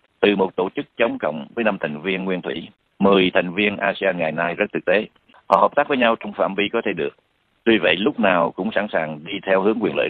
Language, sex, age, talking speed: Vietnamese, male, 60-79, 260 wpm